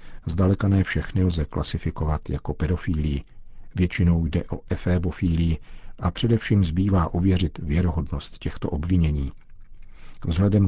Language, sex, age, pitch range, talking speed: Czech, male, 50-69, 80-95 Hz, 105 wpm